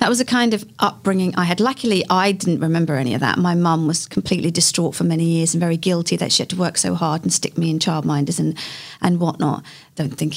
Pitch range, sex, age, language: 165-195 Hz, female, 40-59, English